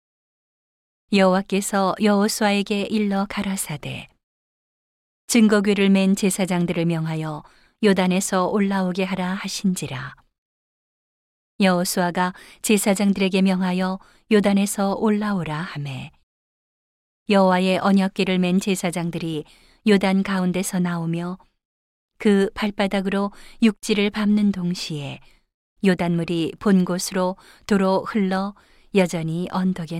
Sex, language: female, Korean